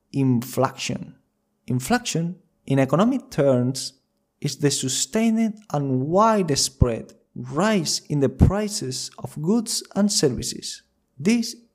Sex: male